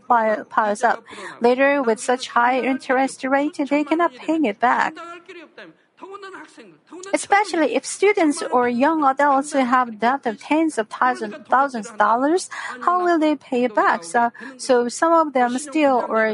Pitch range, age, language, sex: 225-285 Hz, 50-69, Korean, female